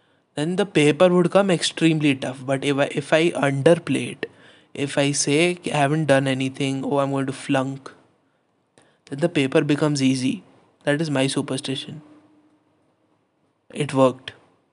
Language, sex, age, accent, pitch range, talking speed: Hindi, male, 20-39, native, 135-155 Hz, 150 wpm